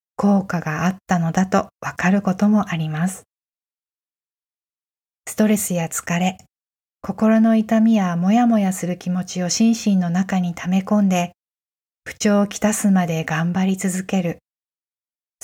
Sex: female